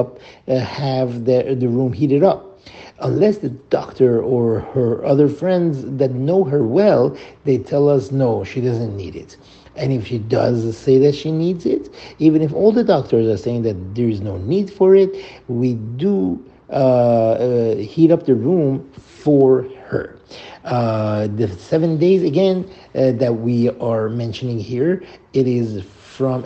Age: 50-69